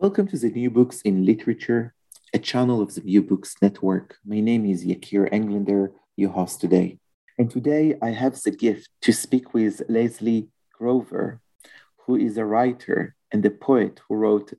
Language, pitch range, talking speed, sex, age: English, 100-125 Hz, 175 wpm, male, 40-59